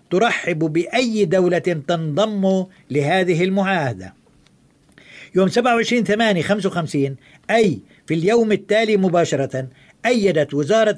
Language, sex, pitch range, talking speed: Arabic, male, 160-210 Hz, 95 wpm